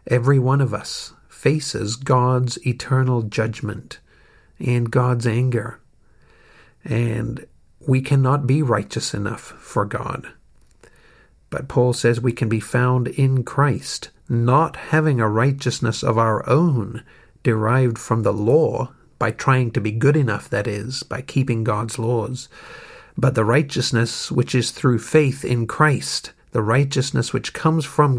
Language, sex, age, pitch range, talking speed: English, male, 50-69, 115-130 Hz, 140 wpm